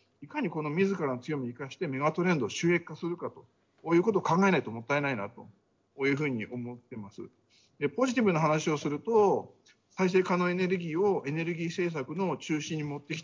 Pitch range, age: 130-185 Hz, 50-69